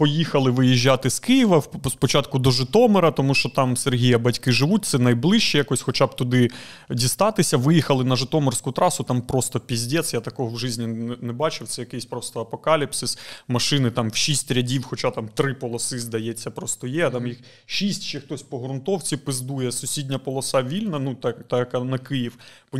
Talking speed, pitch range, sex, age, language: 175 wpm, 125-150 Hz, male, 30-49, Ukrainian